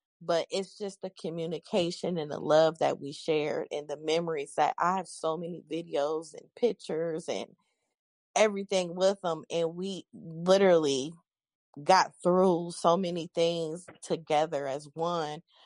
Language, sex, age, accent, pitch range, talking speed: English, female, 20-39, American, 160-185 Hz, 140 wpm